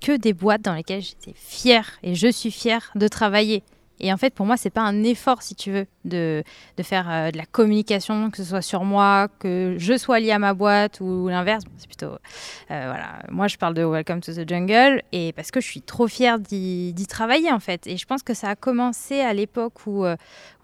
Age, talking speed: 20-39, 240 wpm